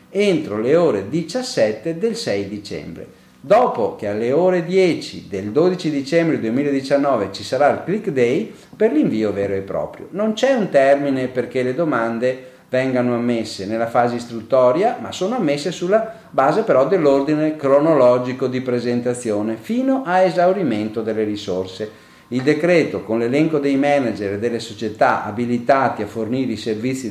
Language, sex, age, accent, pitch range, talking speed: Italian, male, 40-59, native, 115-165 Hz, 150 wpm